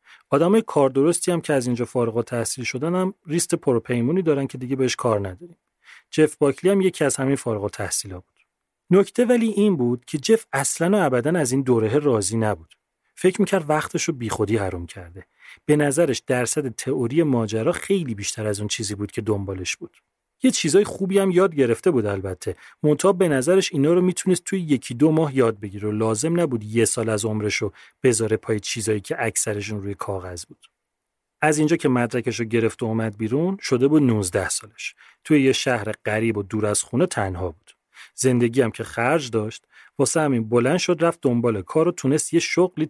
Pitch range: 110-165 Hz